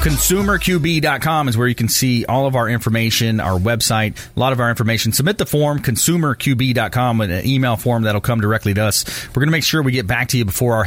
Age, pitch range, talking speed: 30-49, 105-145 Hz, 240 wpm